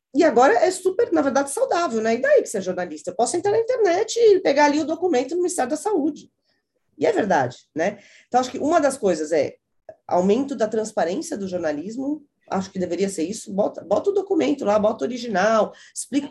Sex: female